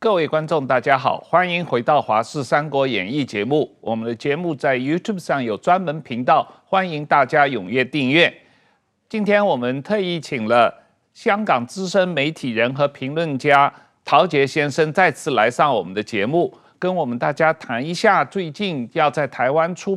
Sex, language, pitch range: male, Chinese, 135-185 Hz